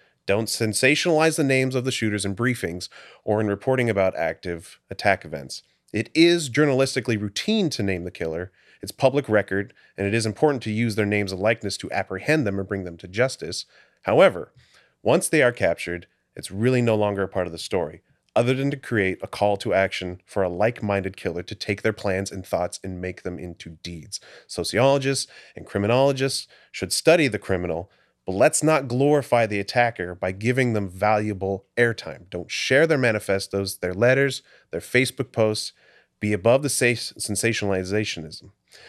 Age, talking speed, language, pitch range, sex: 30-49, 175 wpm, English, 95-130 Hz, male